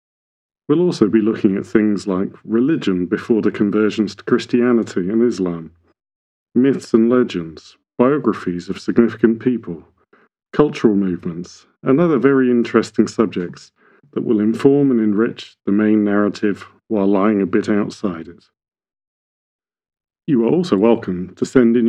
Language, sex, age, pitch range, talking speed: English, male, 40-59, 95-120 Hz, 135 wpm